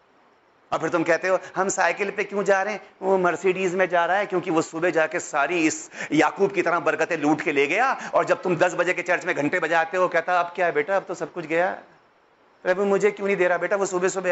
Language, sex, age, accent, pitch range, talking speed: Hindi, male, 30-49, native, 180-295 Hz, 275 wpm